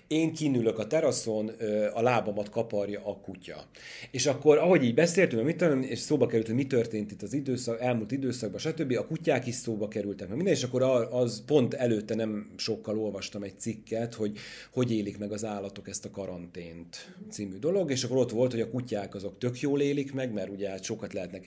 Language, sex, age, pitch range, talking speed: Hungarian, male, 30-49, 105-130 Hz, 195 wpm